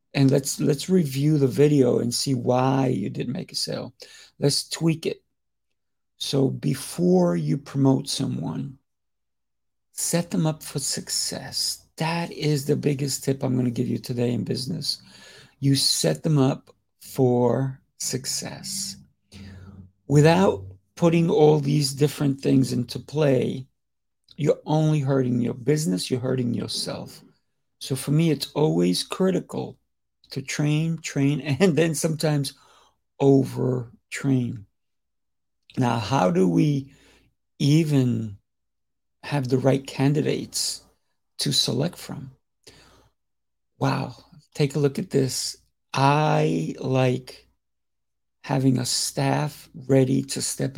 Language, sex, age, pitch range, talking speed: English, male, 50-69, 125-150 Hz, 120 wpm